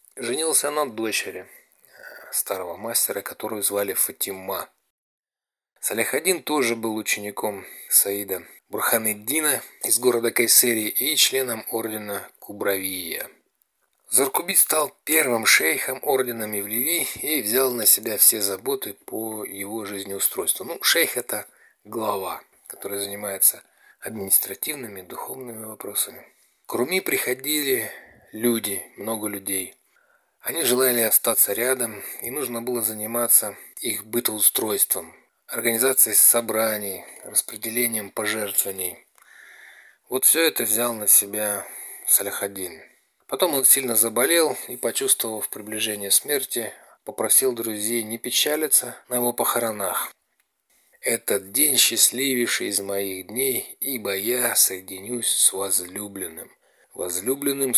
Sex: male